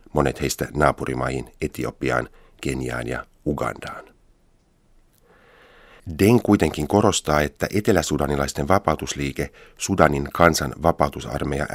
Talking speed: 80 wpm